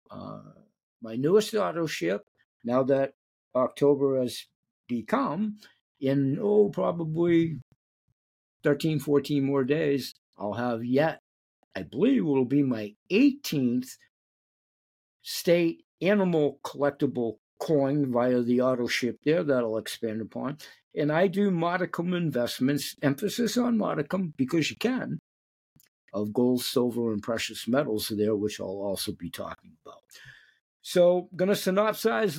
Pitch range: 125-185 Hz